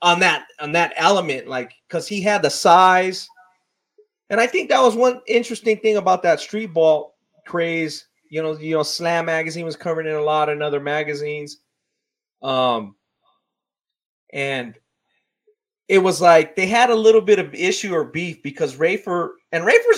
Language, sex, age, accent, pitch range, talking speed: English, male, 30-49, American, 155-220 Hz, 170 wpm